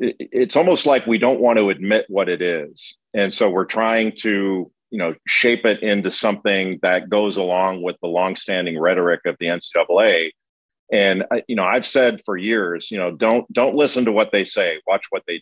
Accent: American